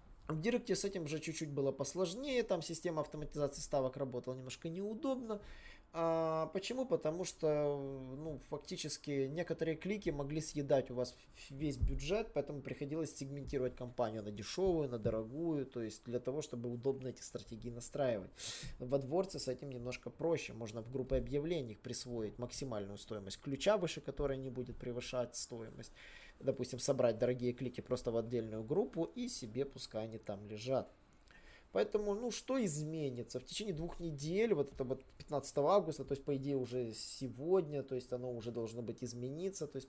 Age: 20-39